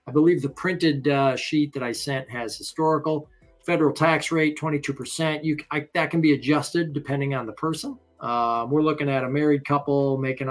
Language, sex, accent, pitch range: English, male, American, 125-150 Hz